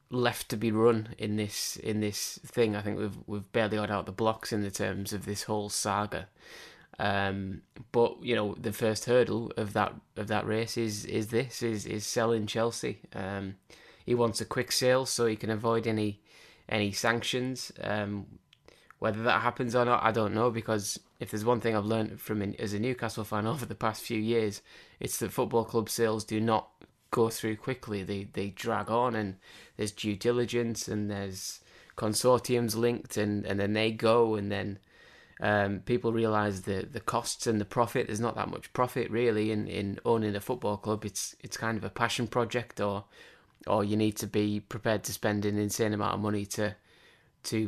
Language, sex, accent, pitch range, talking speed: English, male, British, 105-115 Hz, 195 wpm